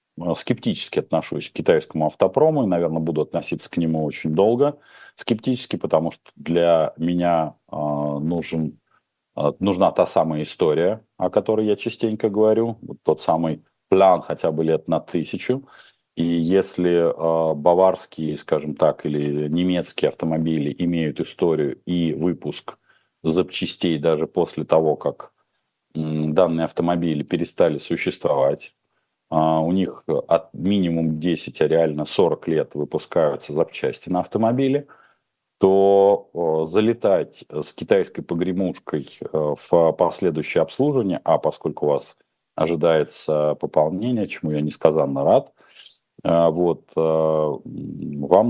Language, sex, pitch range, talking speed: Russian, male, 80-95 Hz, 115 wpm